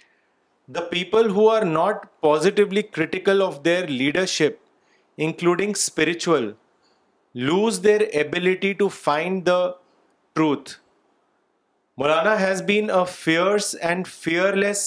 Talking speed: 105 wpm